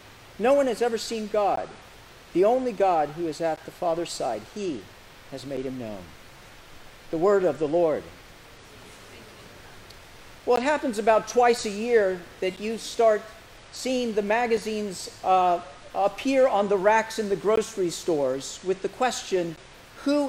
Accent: American